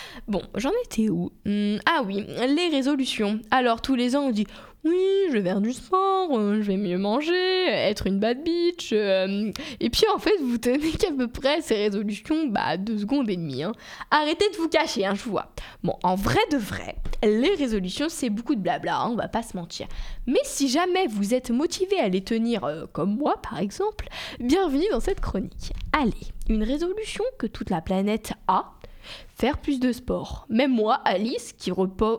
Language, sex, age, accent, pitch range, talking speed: French, female, 20-39, French, 205-300 Hz, 200 wpm